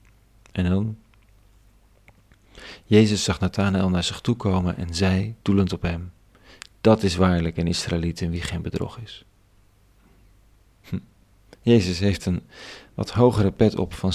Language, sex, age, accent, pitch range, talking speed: Dutch, male, 40-59, Dutch, 95-105 Hz, 140 wpm